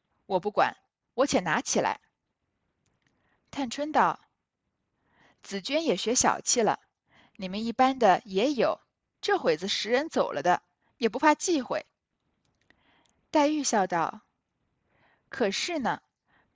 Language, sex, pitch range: Chinese, female, 200-290 Hz